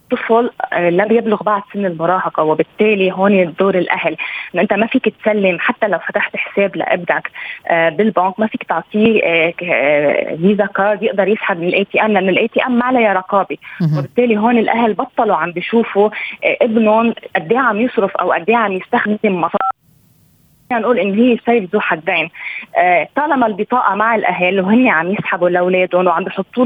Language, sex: Arabic, female